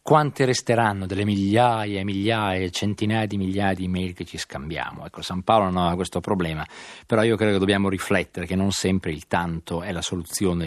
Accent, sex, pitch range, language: native, male, 95-120 Hz, Italian